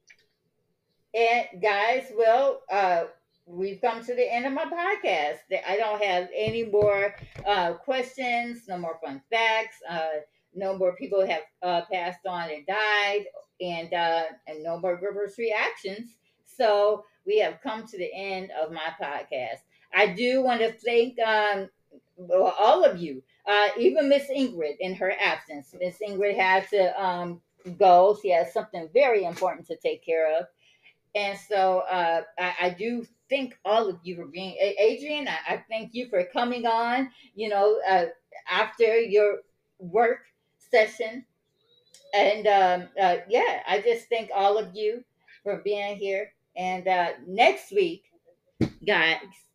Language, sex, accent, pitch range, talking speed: English, female, American, 185-240 Hz, 155 wpm